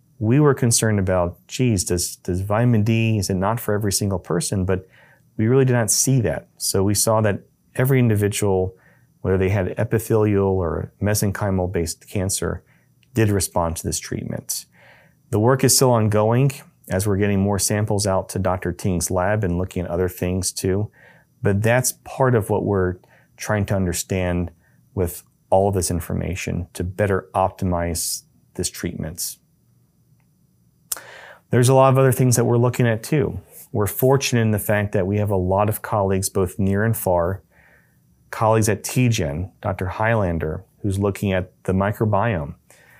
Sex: male